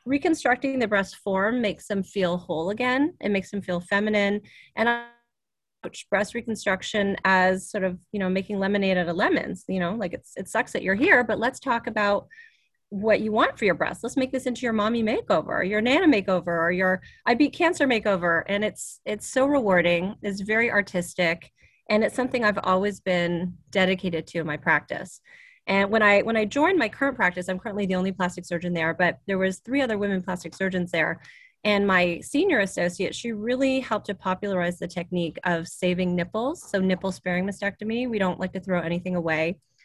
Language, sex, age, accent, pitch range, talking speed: English, female, 30-49, American, 180-225 Hz, 200 wpm